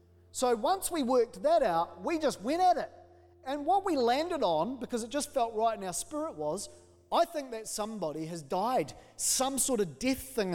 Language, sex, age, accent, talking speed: English, male, 30-49, Australian, 205 wpm